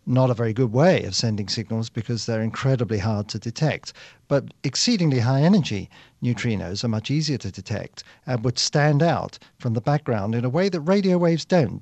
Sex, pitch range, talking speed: male, 110-140 Hz, 190 wpm